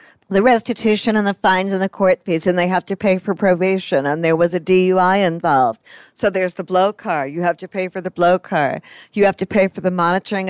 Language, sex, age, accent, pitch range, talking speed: English, female, 50-69, American, 175-210 Hz, 240 wpm